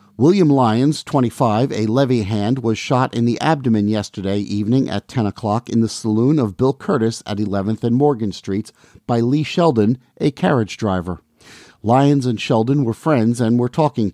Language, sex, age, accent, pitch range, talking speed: English, male, 50-69, American, 105-130 Hz, 175 wpm